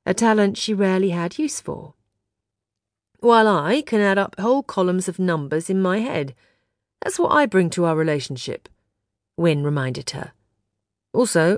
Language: English